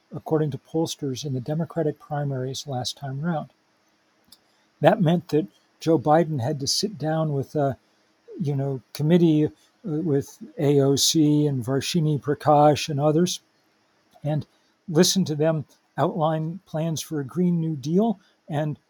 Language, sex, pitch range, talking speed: English, male, 140-165 Hz, 135 wpm